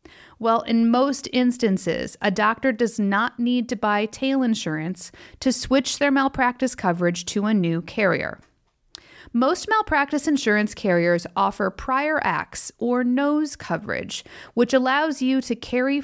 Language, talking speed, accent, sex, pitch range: English, 140 wpm, American, female, 195-265 Hz